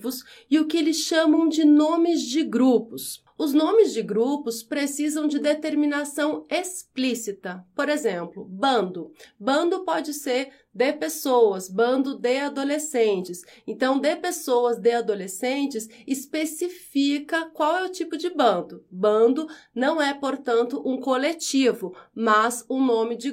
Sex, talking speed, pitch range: female, 130 wpm, 235-305 Hz